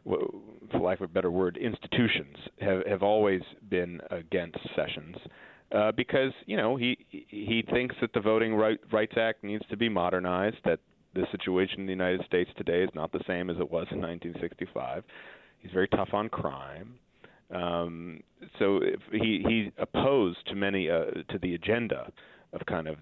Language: English